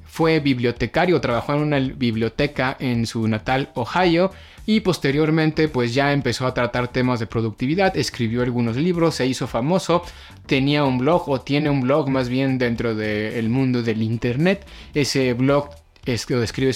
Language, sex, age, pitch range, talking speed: Spanish, male, 30-49, 120-155 Hz, 165 wpm